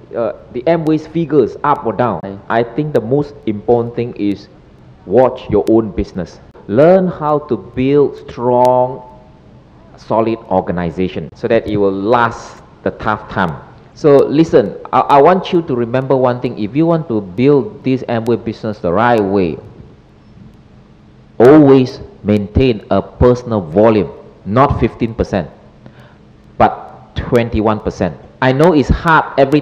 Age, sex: 50-69, male